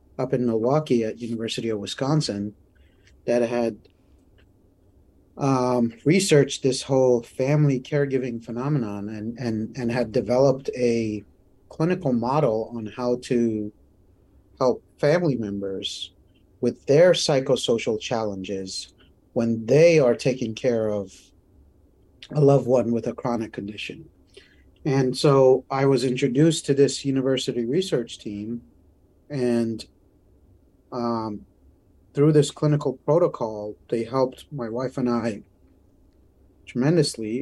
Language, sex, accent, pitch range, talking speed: English, male, American, 95-135 Hz, 110 wpm